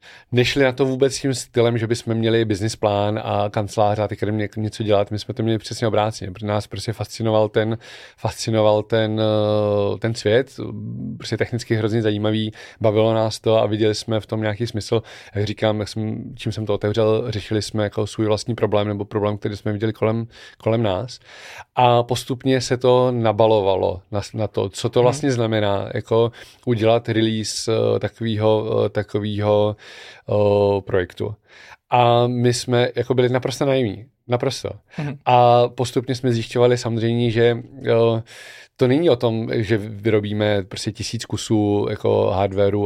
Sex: male